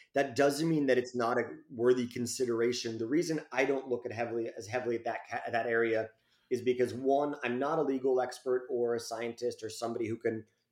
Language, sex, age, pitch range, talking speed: English, male, 30-49, 115-135 Hz, 205 wpm